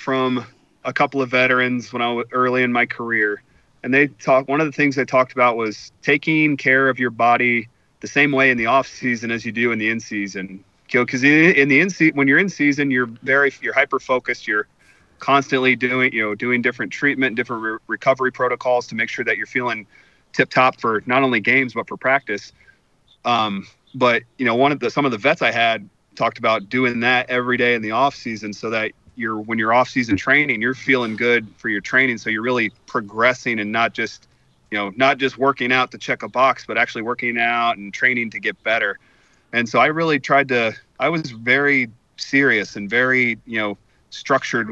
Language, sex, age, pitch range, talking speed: English, male, 30-49, 110-130 Hz, 220 wpm